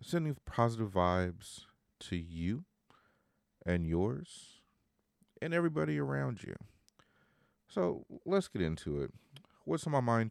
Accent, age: American, 40-59